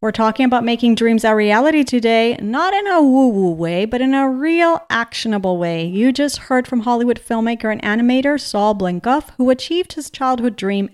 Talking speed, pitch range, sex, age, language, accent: 185 wpm, 190-265 Hz, female, 40-59, English, American